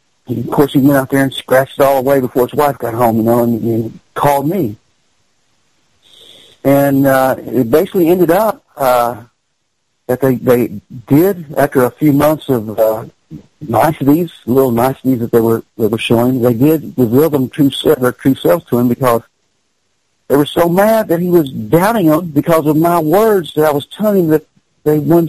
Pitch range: 130-160 Hz